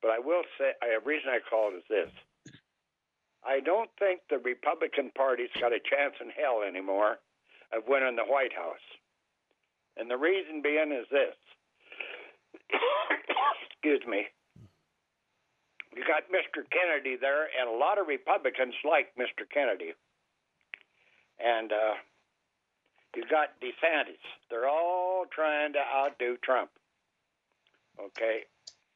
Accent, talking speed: American, 125 wpm